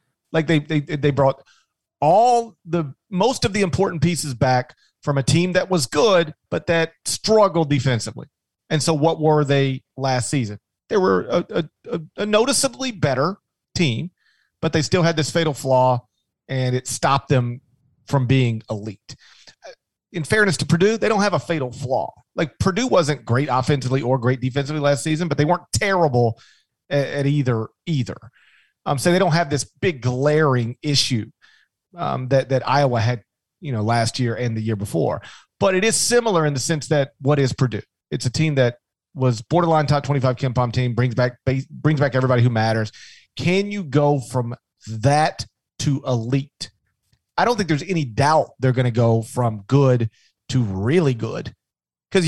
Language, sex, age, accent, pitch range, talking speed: English, male, 40-59, American, 125-160 Hz, 175 wpm